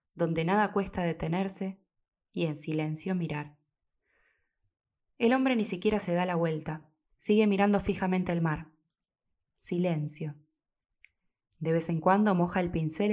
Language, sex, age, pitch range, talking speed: Spanish, female, 20-39, 160-195 Hz, 135 wpm